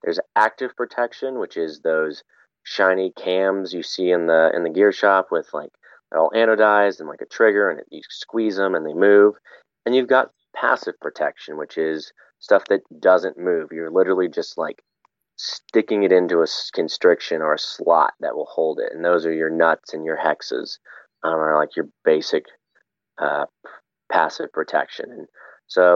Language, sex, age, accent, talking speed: English, male, 30-49, American, 180 wpm